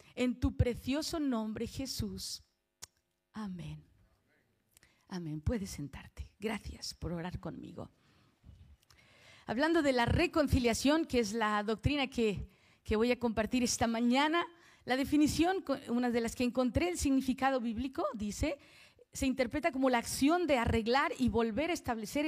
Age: 40-59